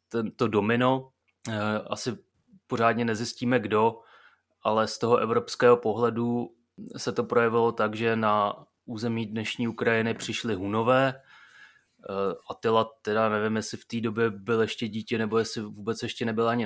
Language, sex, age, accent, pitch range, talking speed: Czech, male, 30-49, native, 110-115 Hz, 135 wpm